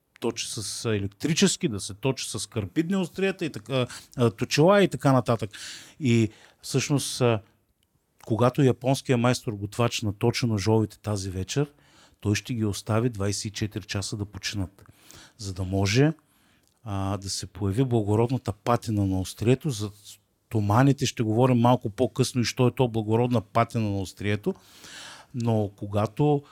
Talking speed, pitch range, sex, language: 140 wpm, 105-135 Hz, male, Bulgarian